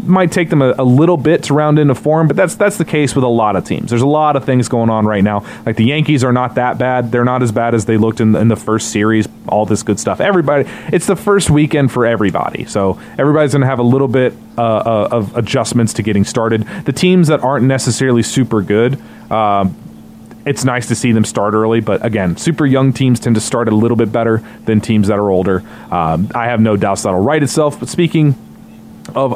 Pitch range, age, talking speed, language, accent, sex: 115-150 Hz, 30-49, 240 wpm, English, American, male